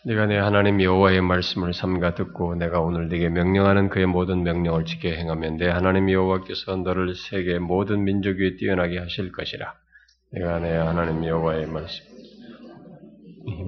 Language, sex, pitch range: Korean, male, 85-95 Hz